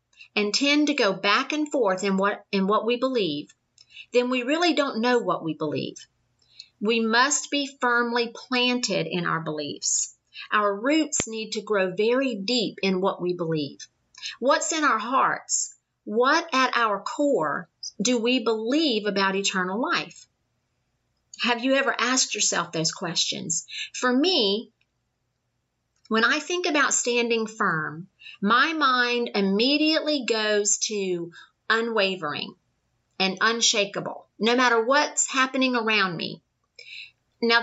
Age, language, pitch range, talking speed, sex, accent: 50-69, English, 190-260 Hz, 135 wpm, female, American